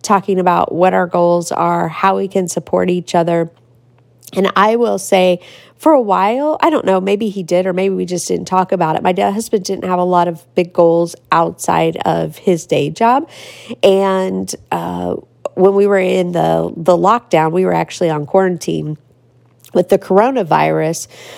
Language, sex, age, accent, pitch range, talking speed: English, female, 40-59, American, 170-200 Hz, 185 wpm